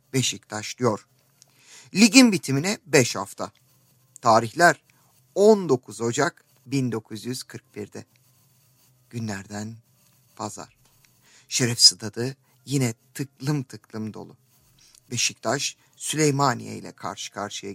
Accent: native